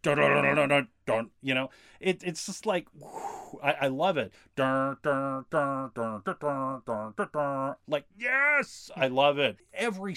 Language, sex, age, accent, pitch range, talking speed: English, male, 40-59, American, 120-155 Hz, 100 wpm